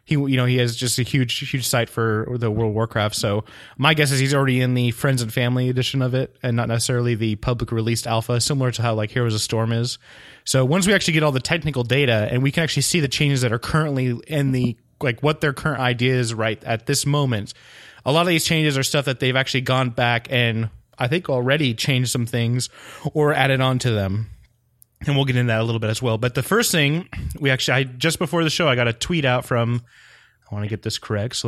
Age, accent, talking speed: 30-49, American, 255 wpm